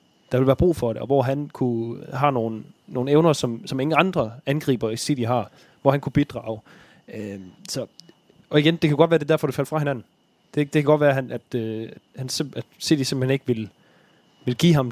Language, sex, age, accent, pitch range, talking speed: Danish, male, 20-39, native, 115-140 Hz, 220 wpm